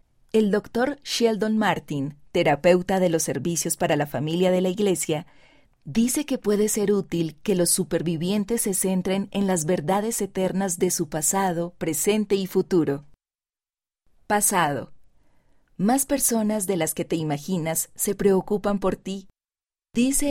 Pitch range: 170-210 Hz